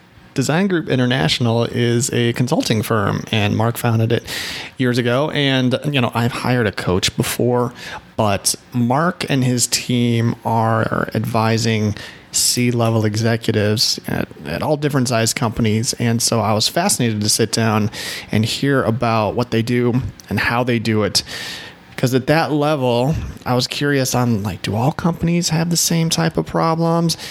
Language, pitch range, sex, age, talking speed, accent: English, 115-140 Hz, male, 30-49, 160 wpm, American